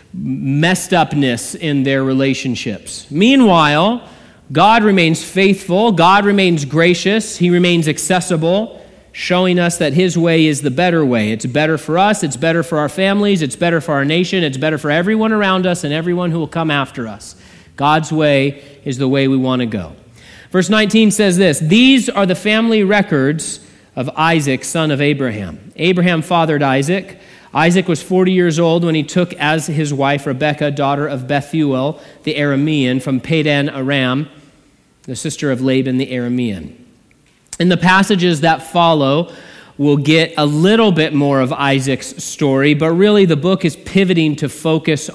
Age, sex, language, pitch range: 40-59, male, English, 140-180 Hz